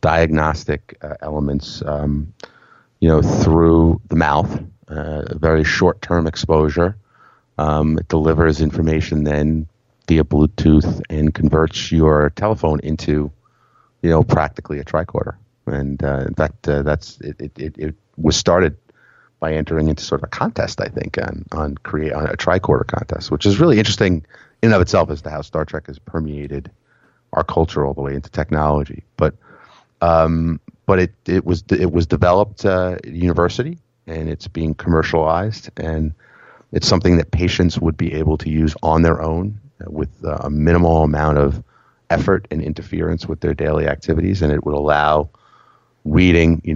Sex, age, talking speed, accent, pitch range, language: male, 30-49, 160 wpm, American, 75-85 Hz, English